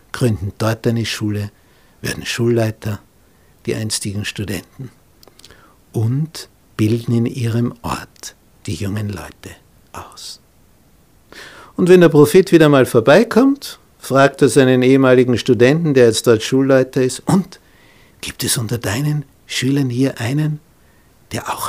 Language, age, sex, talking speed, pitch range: German, 60-79, male, 125 wpm, 105-130 Hz